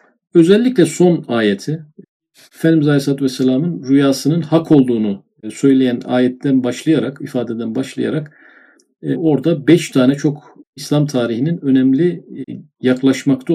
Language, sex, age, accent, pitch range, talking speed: Turkish, male, 50-69, native, 125-155 Hz, 95 wpm